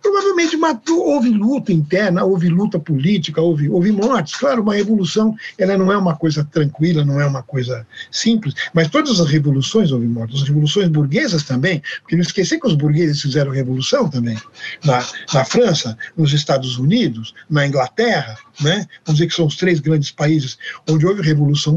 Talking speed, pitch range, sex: 175 wpm, 140-190 Hz, male